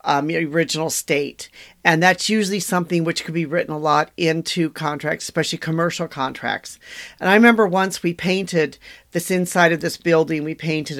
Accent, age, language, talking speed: American, 40-59, English, 170 wpm